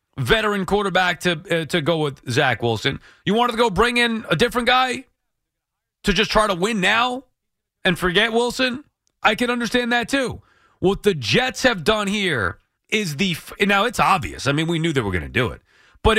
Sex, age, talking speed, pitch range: male, 30-49, 210 wpm, 155-220 Hz